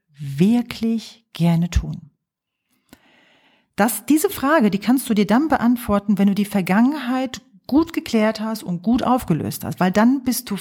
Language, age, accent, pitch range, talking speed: German, 40-59, German, 195-255 Hz, 145 wpm